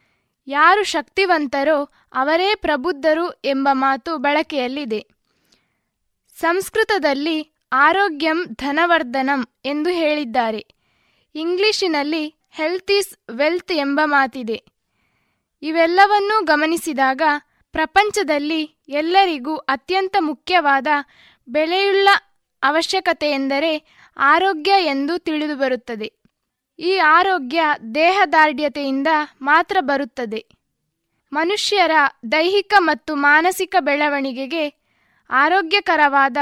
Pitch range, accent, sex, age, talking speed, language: 285-355 Hz, native, female, 20-39, 65 wpm, Kannada